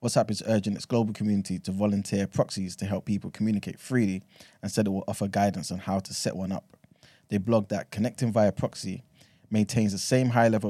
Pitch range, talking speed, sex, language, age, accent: 100-115 Hz, 205 wpm, male, English, 20-39, British